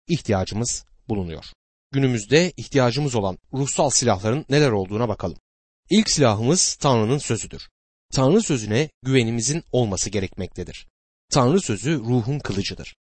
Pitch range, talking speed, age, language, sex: 110-155 Hz, 105 wpm, 30-49, Turkish, male